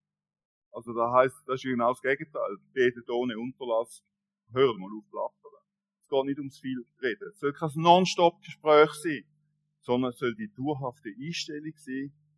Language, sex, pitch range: German, male, 130-180 Hz